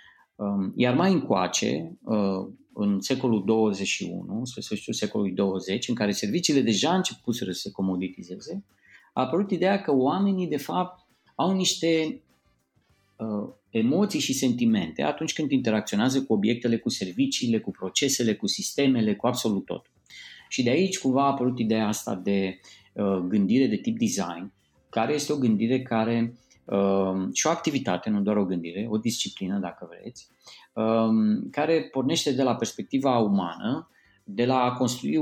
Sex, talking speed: male, 140 wpm